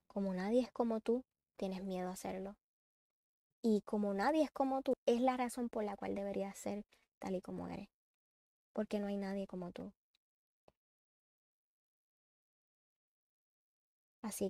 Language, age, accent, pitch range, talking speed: Spanish, 10-29, American, 195-215 Hz, 140 wpm